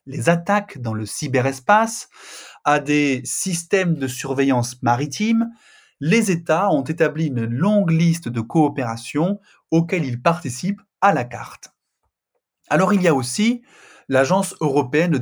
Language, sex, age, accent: French, male, 30-49, French